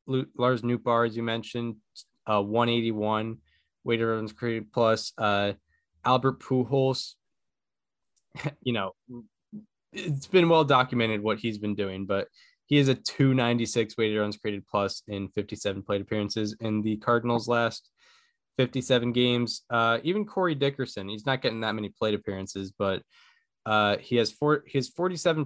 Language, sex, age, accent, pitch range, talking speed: English, male, 20-39, American, 110-130 Hz, 140 wpm